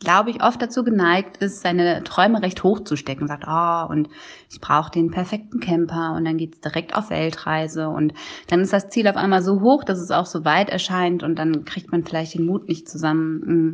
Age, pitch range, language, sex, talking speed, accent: 20-39, 165-195 Hz, German, female, 225 wpm, German